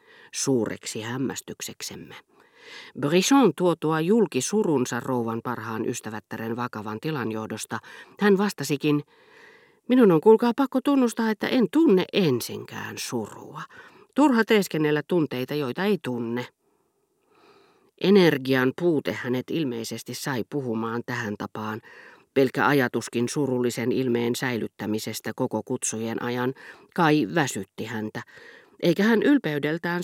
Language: Finnish